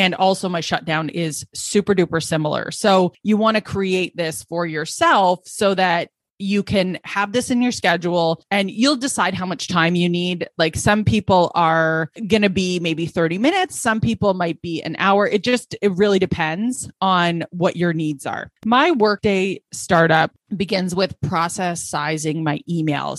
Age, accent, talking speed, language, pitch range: 20-39, American, 175 wpm, English, 165-200 Hz